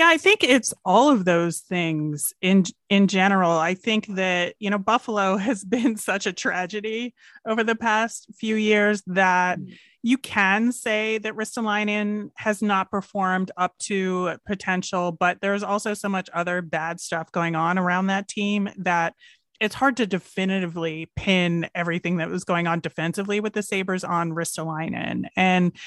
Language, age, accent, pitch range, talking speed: English, 30-49, American, 175-210 Hz, 160 wpm